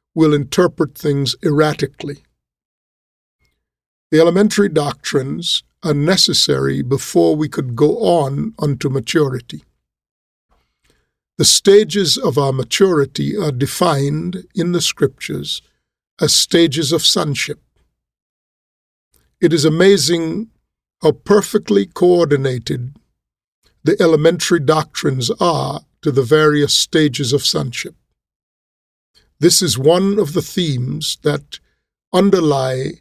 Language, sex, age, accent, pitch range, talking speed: English, male, 50-69, American, 135-170 Hz, 100 wpm